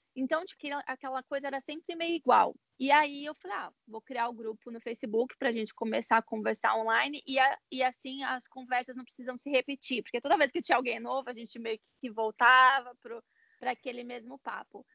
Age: 20-39